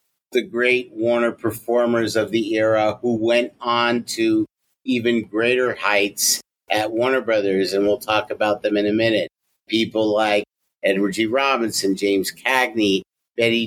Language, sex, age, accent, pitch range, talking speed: English, male, 50-69, American, 110-125 Hz, 145 wpm